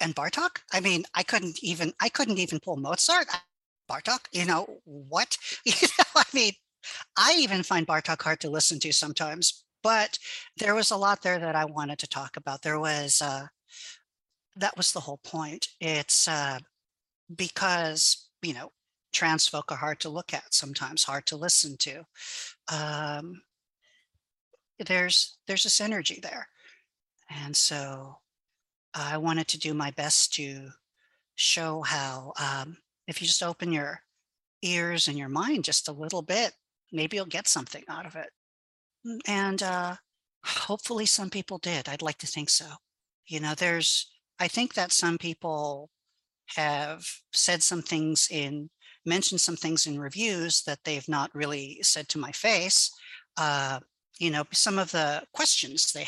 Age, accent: 50-69, American